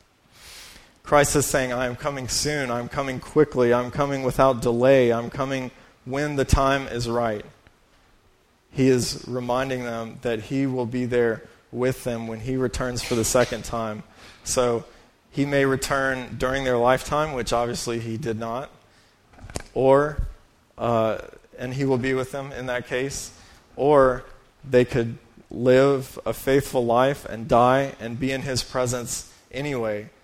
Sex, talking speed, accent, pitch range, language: male, 160 wpm, American, 115-130 Hz, English